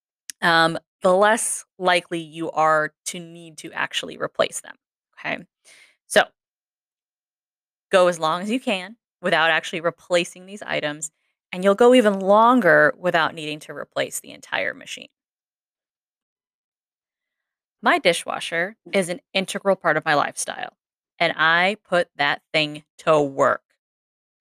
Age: 10-29